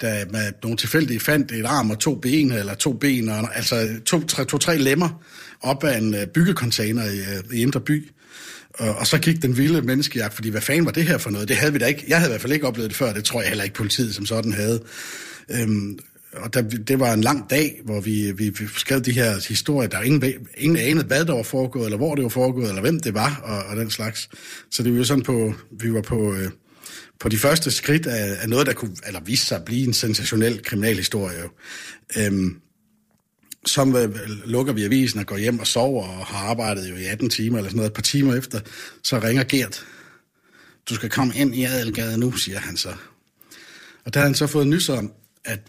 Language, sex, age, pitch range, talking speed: Danish, male, 60-79, 110-140 Hz, 225 wpm